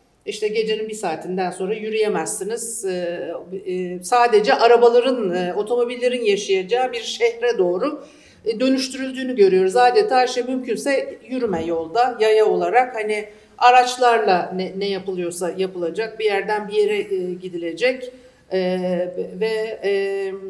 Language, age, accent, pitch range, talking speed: Turkish, 60-79, native, 185-245 Hz, 110 wpm